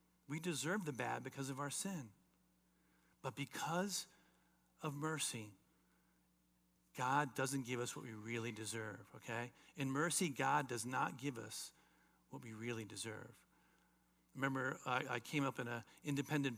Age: 50-69